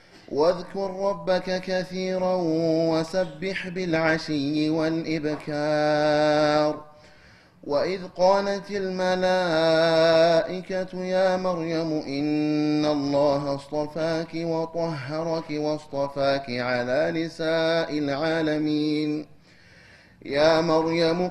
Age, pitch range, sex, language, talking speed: 30-49, 150-185 Hz, male, Amharic, 60 wpm